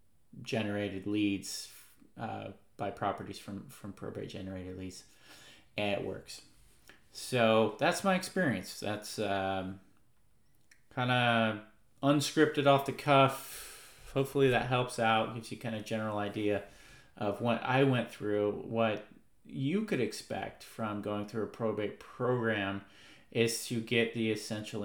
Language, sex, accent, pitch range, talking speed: English, male, American, 100-120 Hz, 135 wpm